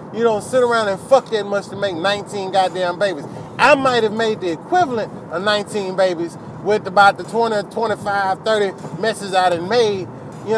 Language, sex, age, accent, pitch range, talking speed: English, male, 30-49, American, 195-275 Hz, 185 wpm